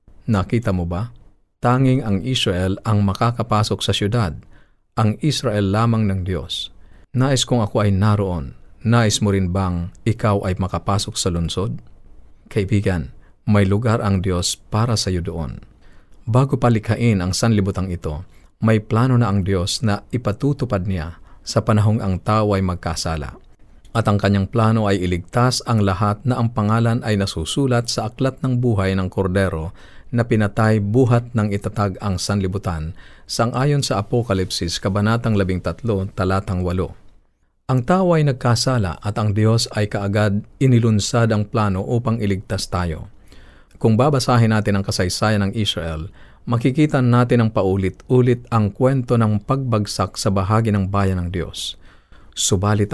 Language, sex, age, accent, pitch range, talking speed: Filipino, male, 40-59, native, 95-115 Hz, 145 wpm